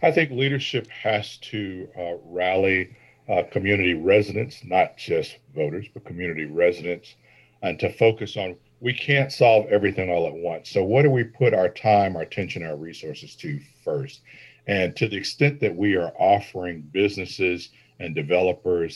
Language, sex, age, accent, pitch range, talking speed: English, male, 50-69, American, 90-125 Hz, 160 wpm